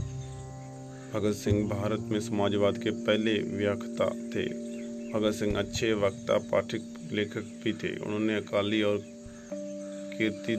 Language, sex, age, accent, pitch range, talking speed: Hindi, male, 40-59, native, 105-115 Hz, 120 wpm